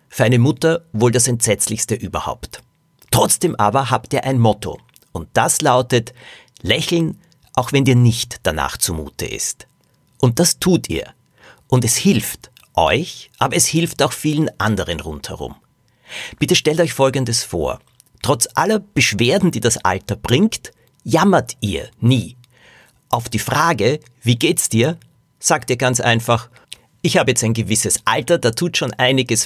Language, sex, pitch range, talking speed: German, male, 110-145 Hz, 150 wpm